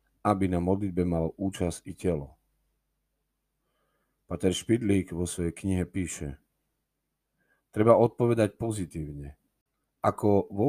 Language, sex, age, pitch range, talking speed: Slovak, male, 40-59, 85-105 Hz, 100 wpm